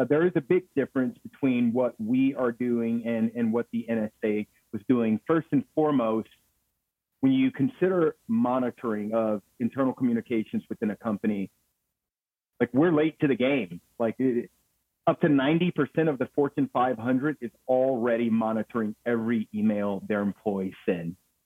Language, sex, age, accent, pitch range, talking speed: English, male, 40-59, American, 115-140 Hz, 150 wpm